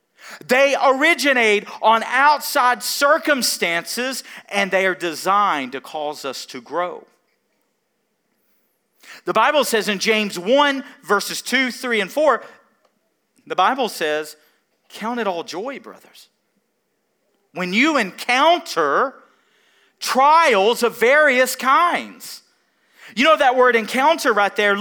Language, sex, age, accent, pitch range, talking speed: English, male, 40-59, American, 220-295 Hz, 115 wpm